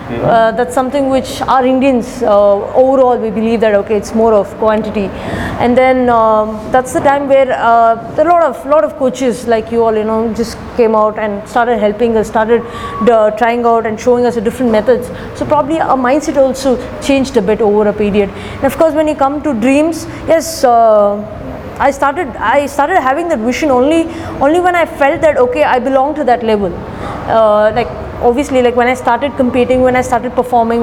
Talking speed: 200 wpm